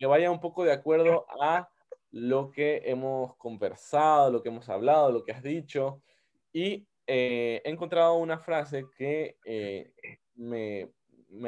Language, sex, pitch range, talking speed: Spanish, male, 115-155 Hz, 150 wpm